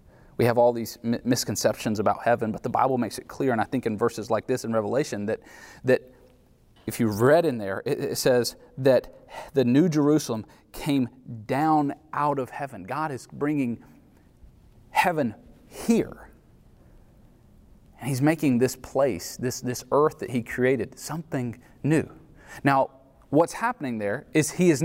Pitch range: 125-170 Hz